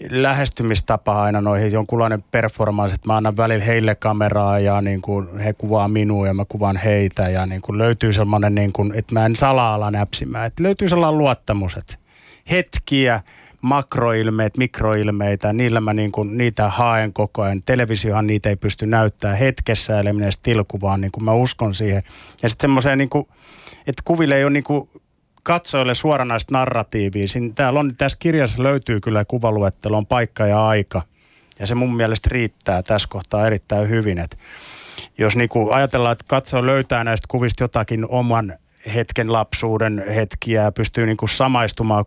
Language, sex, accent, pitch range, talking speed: Finnish, male, native, 105-125 Hz, 160 wpm